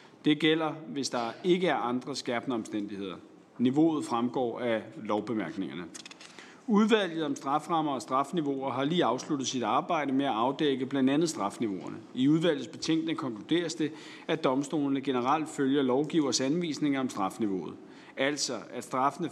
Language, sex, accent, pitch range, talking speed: Danish, male, native, 125-155 Hz, 140 wpm